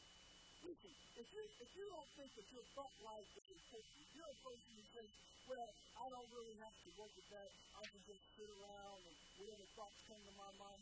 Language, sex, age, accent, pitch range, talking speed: English, male, 50-69, American, 210-260 Hz, 205 wpm